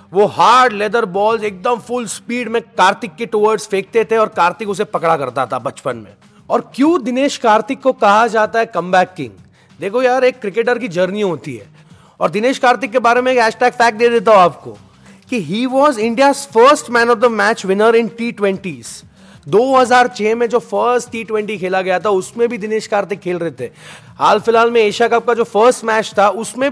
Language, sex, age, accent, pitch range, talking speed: Hindi, male, 30-49, native, 190-245 Hz, 190 wpm